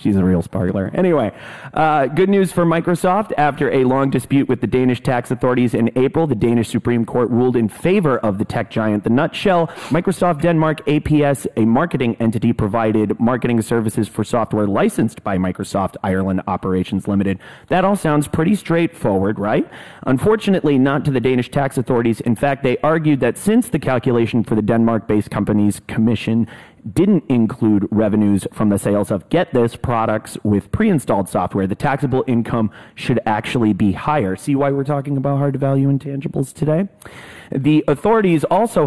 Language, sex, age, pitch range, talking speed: English, male, 30-49, 105-140 Hz, 170 wpm